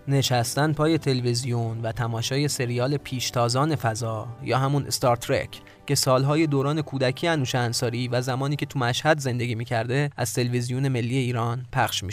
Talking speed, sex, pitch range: 150 wpm, male, 120-150 Hz